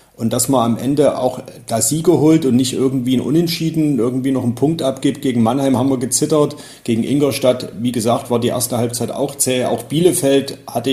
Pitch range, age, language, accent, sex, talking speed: 115-140 Hz, 40-59, German, German, male, 205 wpm